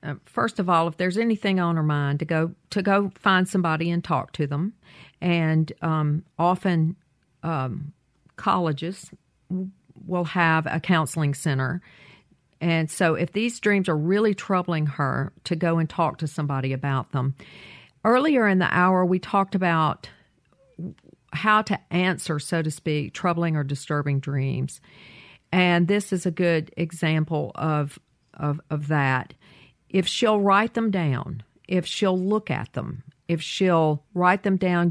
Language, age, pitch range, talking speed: English, 50-69, 150-185 Hz, 150 wpm